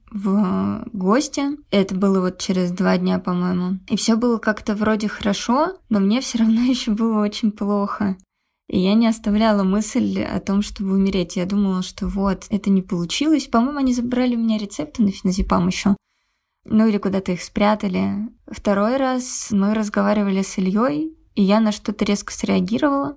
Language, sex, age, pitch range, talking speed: Russian, female, 20-39, 195-225 Hz, 170 wpm